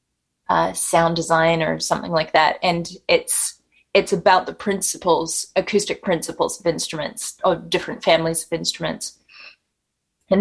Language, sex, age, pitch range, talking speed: English, female, 20-39, 165-195 Hz, 135 wpm